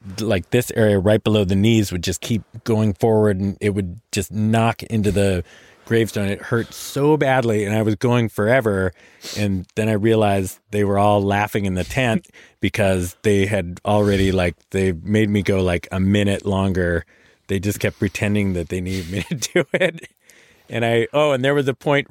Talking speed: 195 wpm